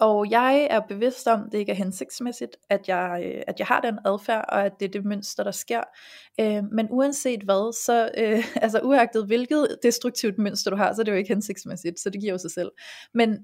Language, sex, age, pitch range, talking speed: Danish, female, 30-49, 205-255 Hz, 230 wpm